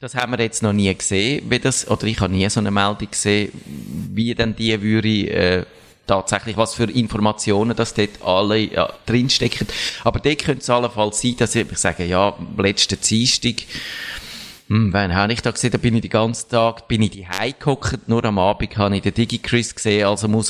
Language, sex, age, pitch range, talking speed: German, male, 30-49, 105-120 Hz, 195 wpm